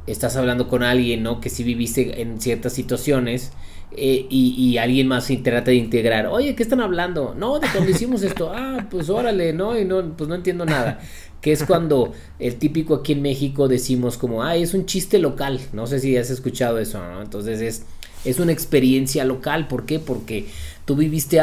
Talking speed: 200 wpm